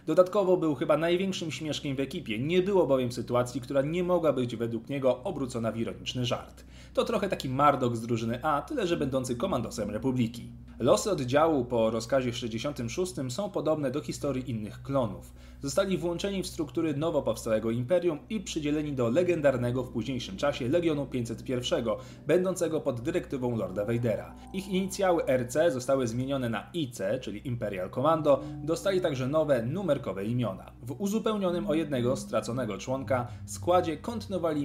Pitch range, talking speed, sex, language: 120-165 Hz, 150 wpm, male, Polish